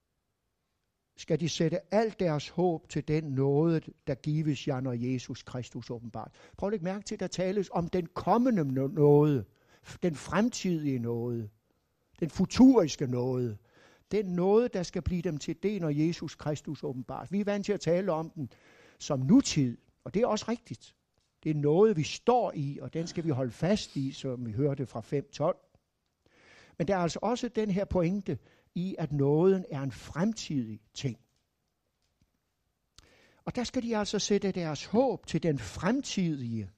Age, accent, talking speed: 60-79, native, 170 wpm